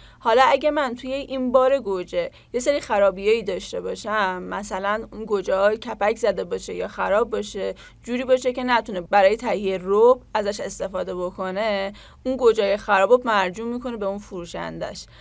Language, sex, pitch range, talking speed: Persian, female, 190-240 Hz, 160 wpm